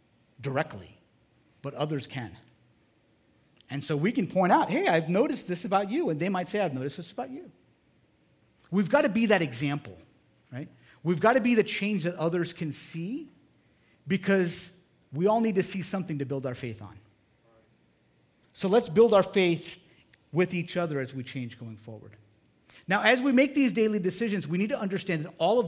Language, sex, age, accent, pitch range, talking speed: English, male, 50-69, American, 140-200 Hz, 190 wpm